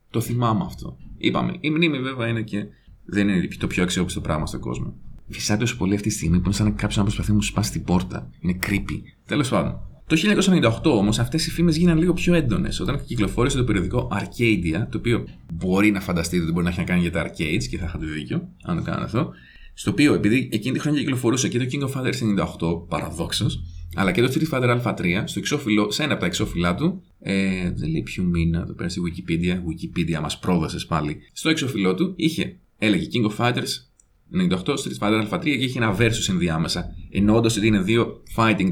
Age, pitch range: 30-49, 90-120 Hz